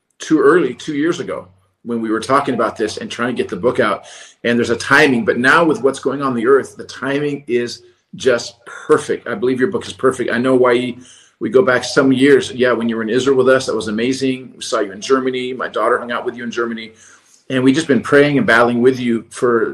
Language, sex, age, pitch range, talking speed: English, male, 40-59, 120-170 Hz, 255 wpm